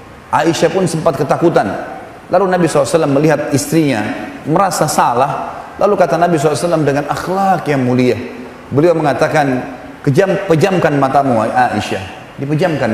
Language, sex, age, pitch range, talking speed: Indonesian, male, 30-49, 140-175 Hz, 115 wpm